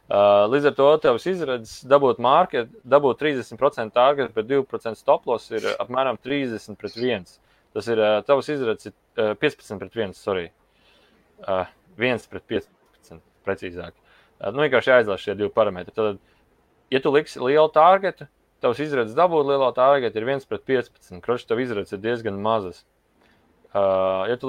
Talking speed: 155 wpm